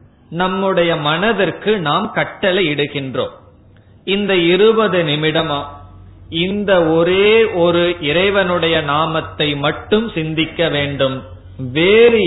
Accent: native